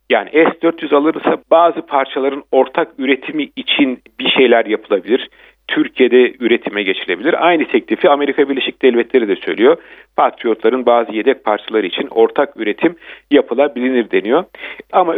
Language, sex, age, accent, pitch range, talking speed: Turkish, male, 50-69, native, 130-175 Hz, 125 wpm